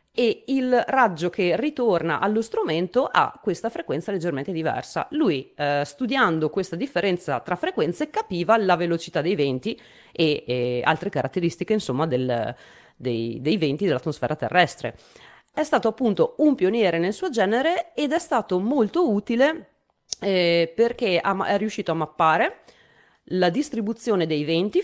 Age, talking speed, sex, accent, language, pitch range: 30-49, 140 wpm, female, native, Italian, 160-230 Hz